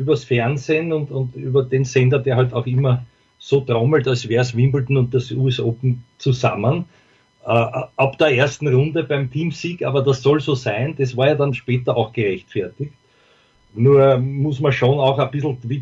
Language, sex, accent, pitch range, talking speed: English, male, Austrian, 120-135 Hz, 185 wpm